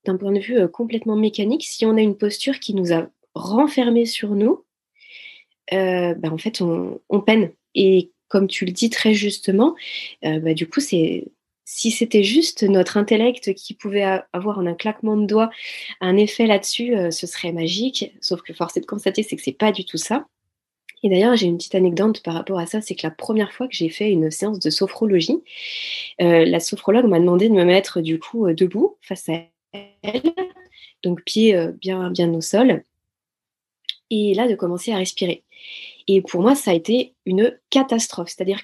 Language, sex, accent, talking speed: French, female, French, 200 wpm